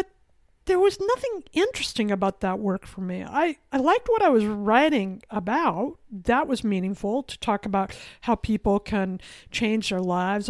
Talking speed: 165 wpm